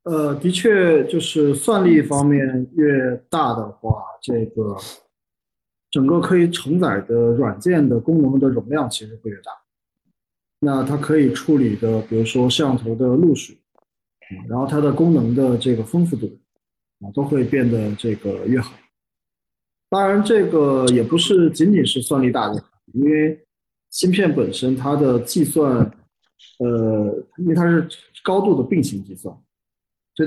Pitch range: 115-155 Hz